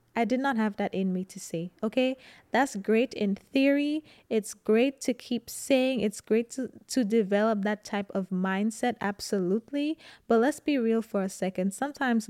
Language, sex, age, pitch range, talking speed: English, female, 20-39, 205-240 Hz, 180 wpm